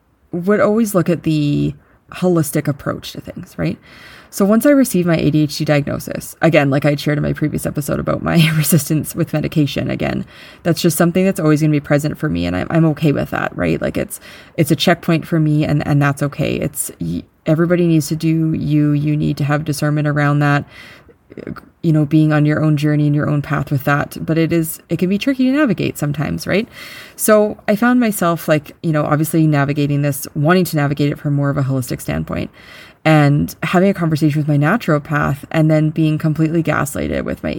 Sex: female